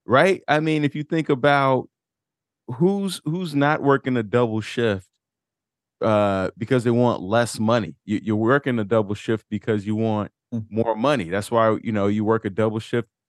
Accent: American